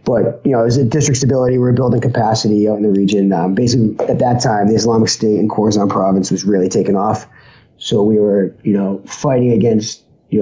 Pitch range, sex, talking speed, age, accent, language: 95-120 Hz, male, 225 wpm, 30-49, American, English